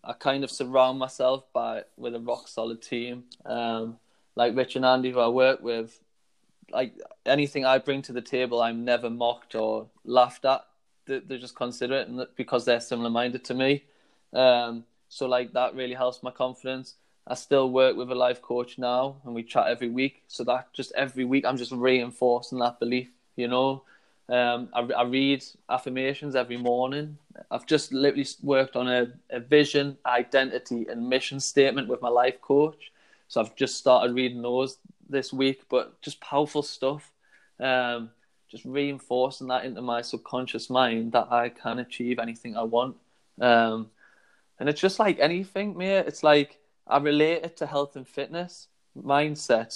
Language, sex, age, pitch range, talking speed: English, male, 20-39, 120-140 Hz, 170 wpm